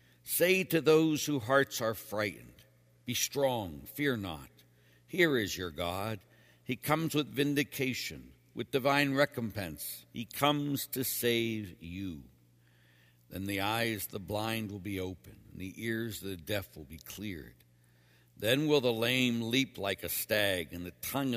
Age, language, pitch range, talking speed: 60-79, English, 80-125 Hz, 155 wpm